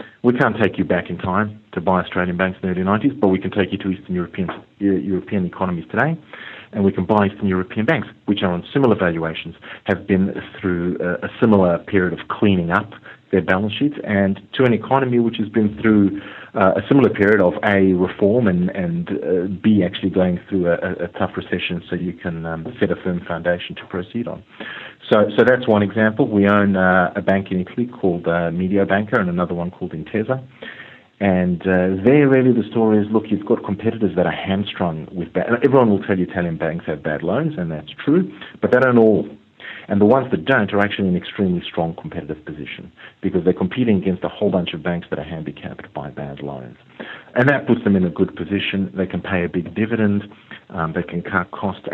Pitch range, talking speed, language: 90-110 Hz, 215 wpm, English